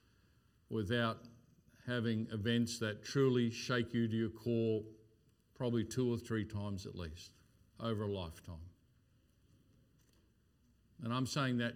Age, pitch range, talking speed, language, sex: 50-69, 100-120 Hz, 120 wpm, English, male